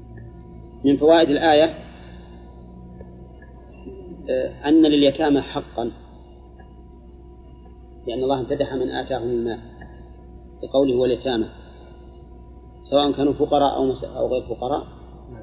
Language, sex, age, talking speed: Arabic, male, 30-49, 80 wpm